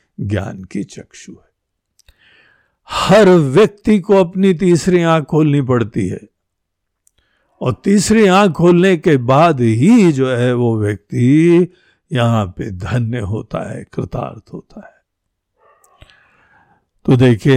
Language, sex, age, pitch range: Hindi, male, 60-79, 120-175 Hz